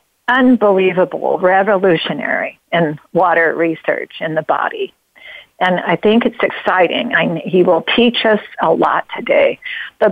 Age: 50-69